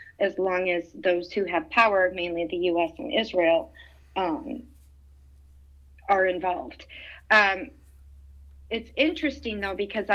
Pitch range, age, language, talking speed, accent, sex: 175-215 Hz, 30-49, English, 120 wpm, American, female